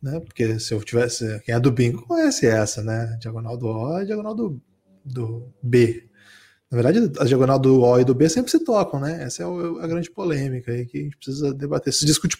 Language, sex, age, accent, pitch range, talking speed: Portuguese, male, 20-39, Brazilian, 120-180 Hz, 220 wpm